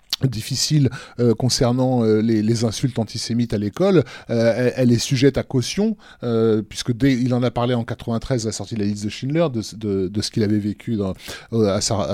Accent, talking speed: French, 215 wpm